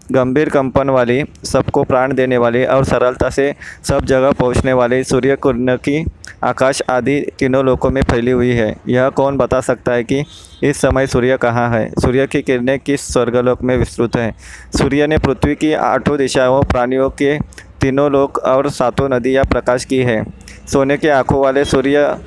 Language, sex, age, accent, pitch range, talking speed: Hindi, male, 20-39, native, 125-135 Hz, 175 wpm